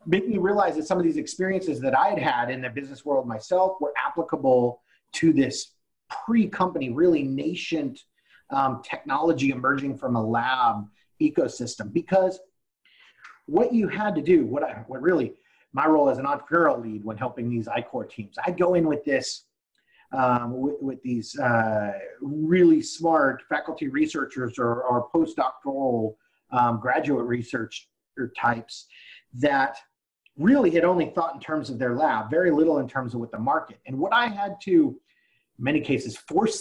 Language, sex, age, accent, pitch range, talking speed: English, male, 30-49, American, 130-190 Hz, 165 wpm